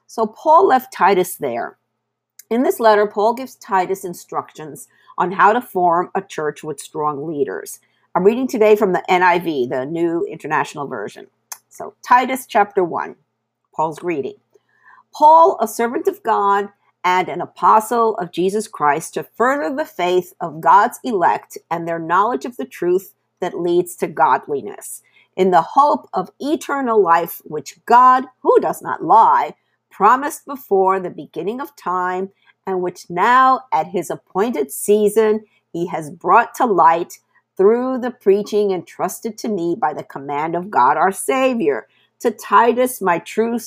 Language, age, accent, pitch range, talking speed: English, 50-69, American, 180-260 Hz, 155 wpm